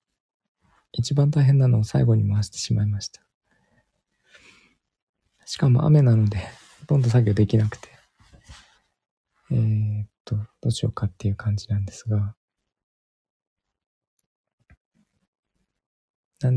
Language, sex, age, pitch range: Japanese, male, 20-39, 105-125 Hz